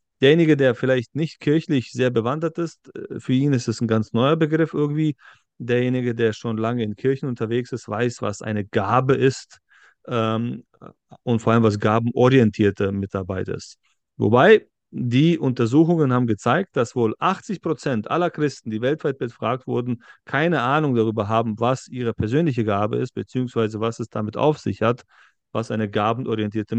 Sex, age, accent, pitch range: male, 30-49, German, 110-135 Hz